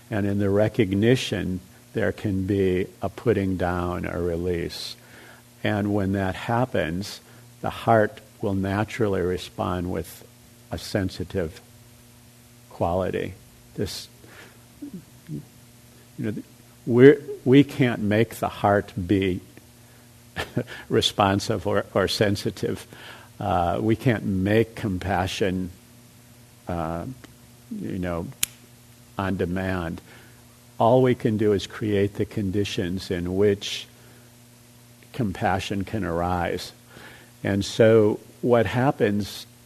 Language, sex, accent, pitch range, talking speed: English, male, American, 95-120 Hz, 100 wpm